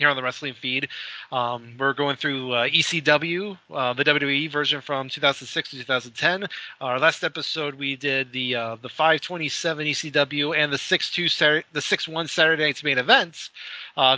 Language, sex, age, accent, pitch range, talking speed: English, male, 30-49, American, 135-165 Hz, 175 wpm